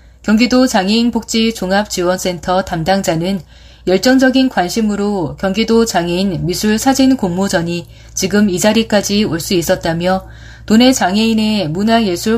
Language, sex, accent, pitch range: Korean, female, native, 175-235 Hz